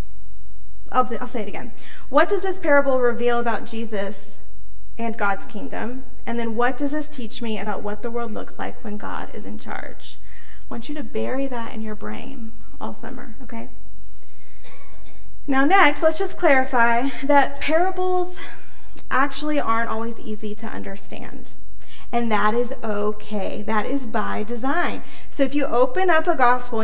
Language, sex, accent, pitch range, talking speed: English, female, American, 215-270 Hz, 165 wpm